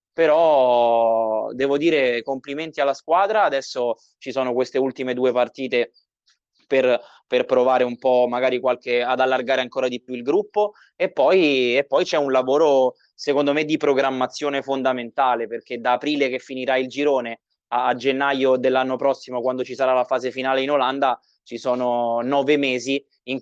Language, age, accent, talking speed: Italian, 20-39, native, 160 wpm